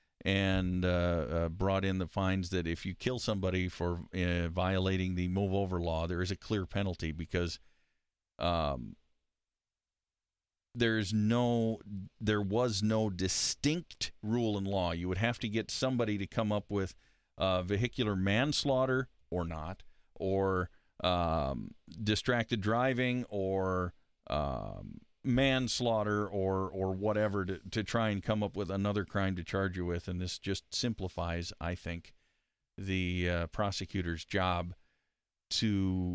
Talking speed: 140 wpm